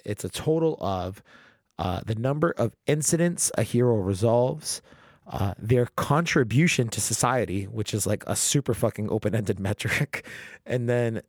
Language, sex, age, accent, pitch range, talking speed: English, male, 30-49, American, 100-125 Hz, 145 wpm